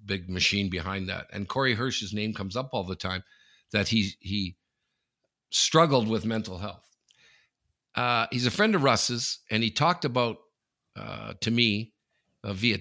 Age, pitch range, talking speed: 50-69, 95-120 Hz, 165 wpm